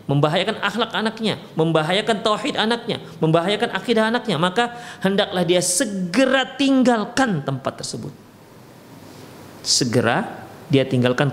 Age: 40-59